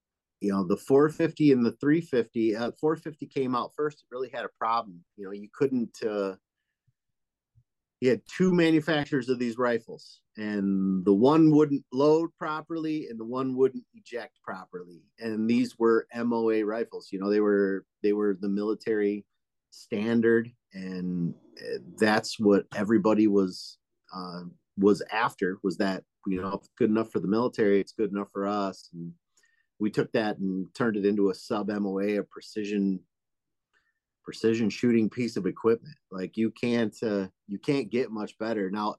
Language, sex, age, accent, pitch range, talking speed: English, male, 30-49, American, 100-125 Hz, 160 wpm